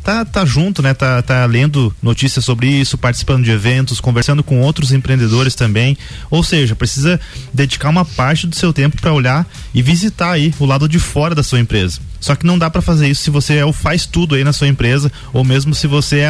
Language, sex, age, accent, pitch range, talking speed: Portuguese, male, 20-39, Brazilian, 125-155 Hz, 225 wpm